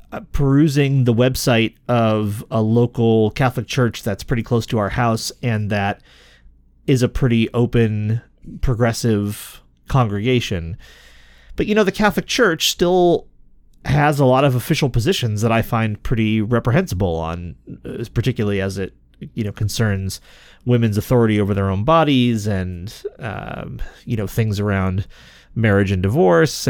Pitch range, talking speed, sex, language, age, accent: 100-125 Hz, 140 wpm, male, English, 30-49, American